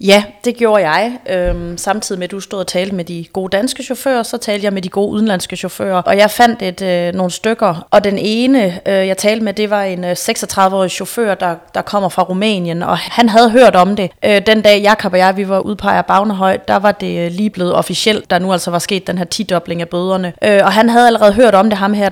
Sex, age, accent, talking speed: female, 30-49, native, 230 wpm